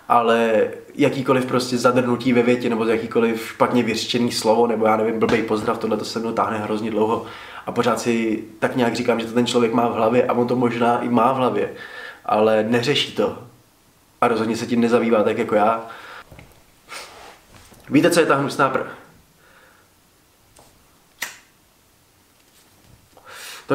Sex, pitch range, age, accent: male, 115-135 Hz, 20-39, native